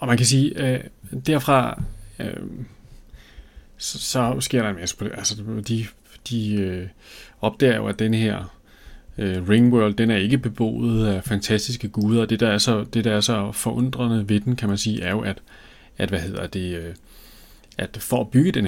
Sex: male